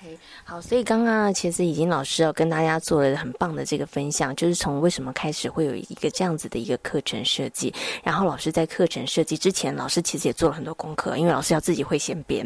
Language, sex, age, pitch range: Chinese, female, 20-39, 160-210 Hz